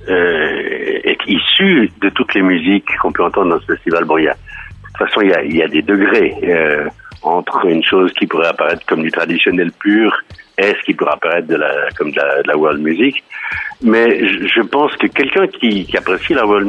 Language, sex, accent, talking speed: French, male, French, 220 wpm